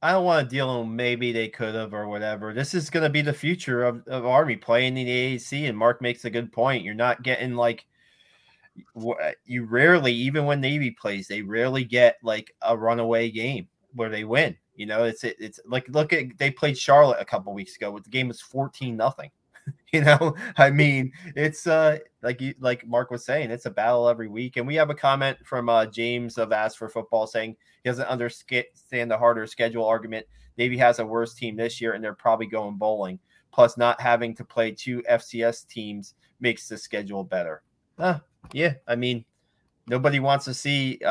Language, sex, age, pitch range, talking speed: English, male, 20-39, 115-140 Hz, 205 wpm